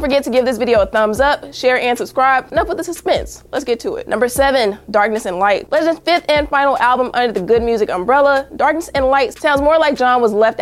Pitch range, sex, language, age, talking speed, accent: 225-290 Hz, female, English, 20-39, 250 wpm, American